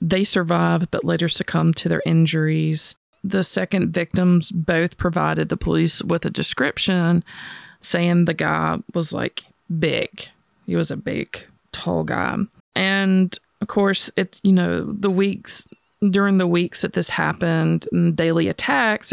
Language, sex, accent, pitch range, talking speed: English, female, American, 160-185 Hz, 145 wpm